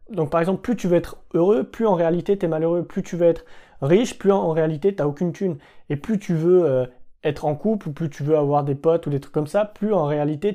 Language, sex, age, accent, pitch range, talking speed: French, male, 20-39, French, 150-190 Hz, 280 wpm